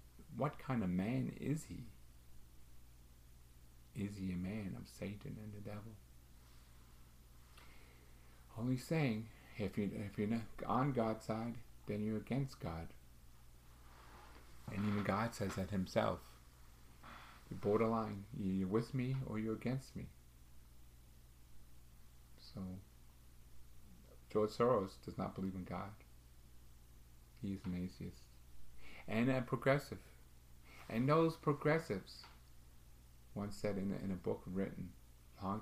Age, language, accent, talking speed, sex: 50-69, English, American, 115 wpm, male